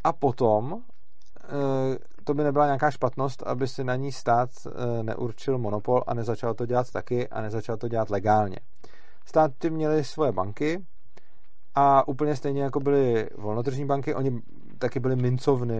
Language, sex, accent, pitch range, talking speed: Czech, male, native, 110-135 Hz, 150 wpm